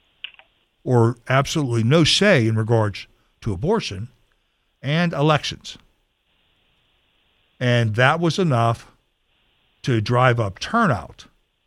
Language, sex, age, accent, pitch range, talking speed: English, male, 60-79, American, 105-135 Hz, 95 wpm